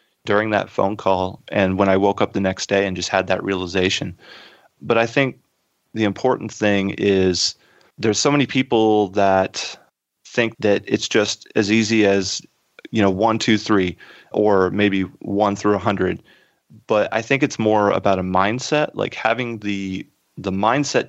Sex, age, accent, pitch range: male, 30-49, American, 95-115 Hz